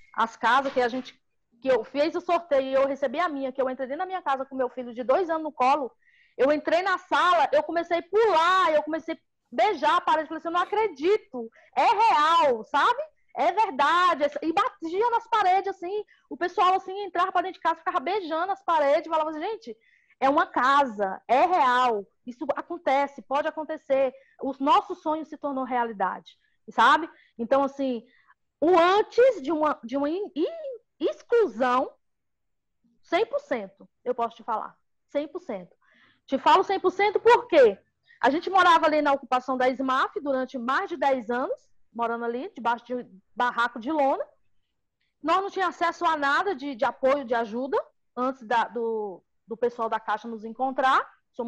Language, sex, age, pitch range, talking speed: Portuguese, female, 20-39, 250-350 Hz, 175 wpm